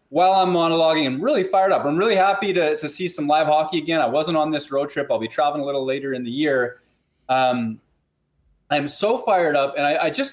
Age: 20-39